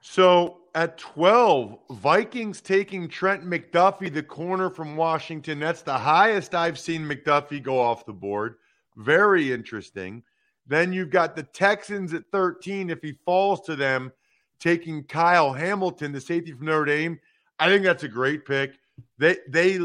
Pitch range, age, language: 145-185 Hz, 40-59, English